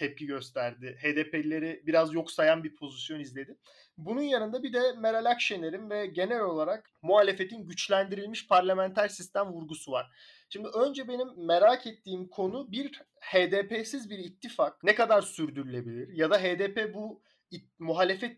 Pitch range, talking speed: 160-245 Hz, 135 wpm